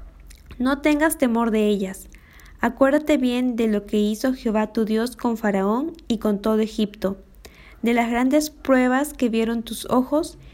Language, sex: Spanish, female